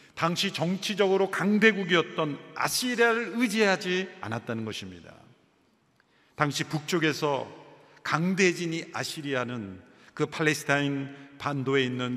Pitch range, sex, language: 130-185 Hz, male, Korean